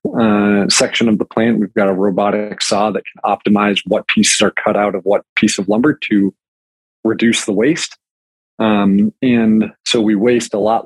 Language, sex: English, male